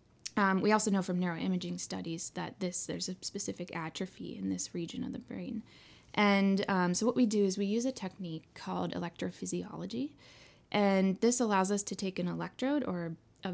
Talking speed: 185 wpm